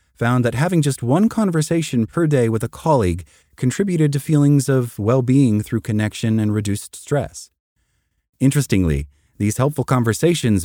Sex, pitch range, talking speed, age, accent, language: male, 85-135 Hz, 140 wpm, 30-49, American, English